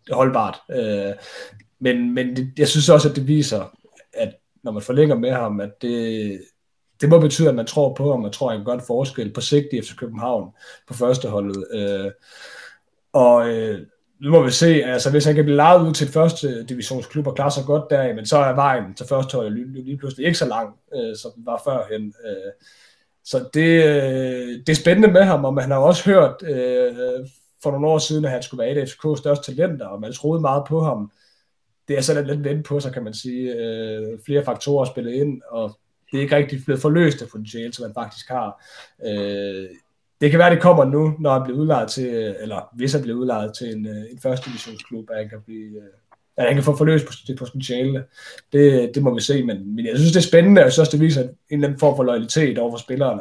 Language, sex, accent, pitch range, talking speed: Danish, male, native, 115-150 Hz, 210 wpm